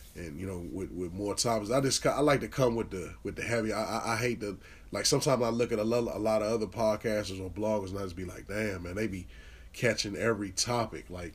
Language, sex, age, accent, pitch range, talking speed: English, male, 20-39, American, 100-115 Hz, 265 wpm